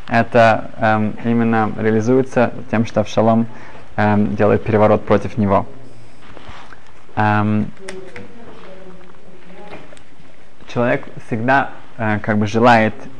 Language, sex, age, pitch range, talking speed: Russian, male, 20-39, 110-135 Hz, 90 wpm